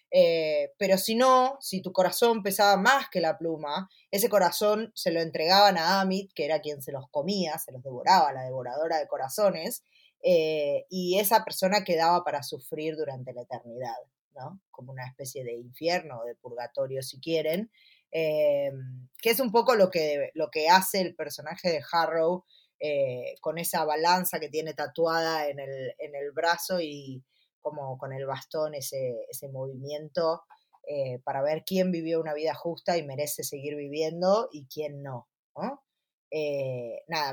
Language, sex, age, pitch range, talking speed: Spanish, female, 20-39, 150-200 Hz, 170 wpm